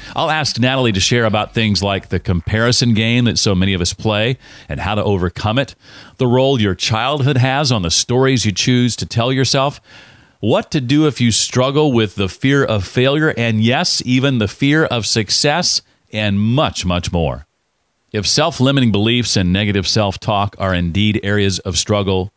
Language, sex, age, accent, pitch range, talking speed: English, male, 40-59, American, 95-125 Hz, 180 wpm